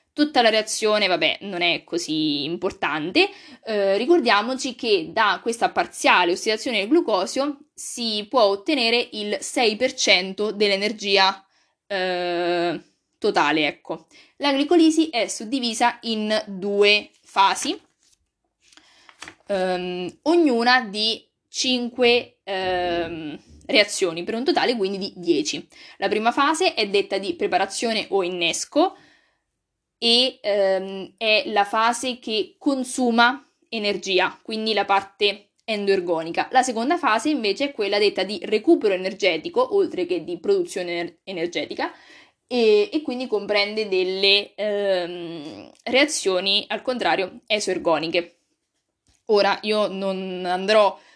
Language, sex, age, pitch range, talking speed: Italian, female, 20-39, 190-270 Hz, 110 wpm